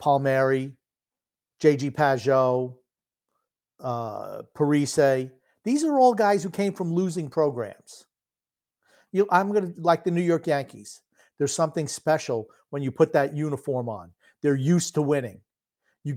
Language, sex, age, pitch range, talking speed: English, male, 50-69, 140-185 Hz, 135 wpm